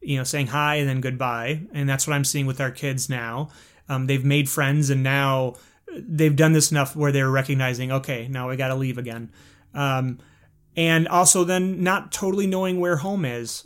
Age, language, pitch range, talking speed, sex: 30-49, English, 130-160 Hz, 200 wpm, male